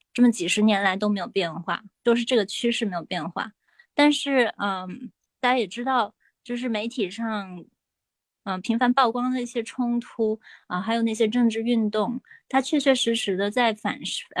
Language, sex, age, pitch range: Chinese, female, 20-39, 200-245 Hz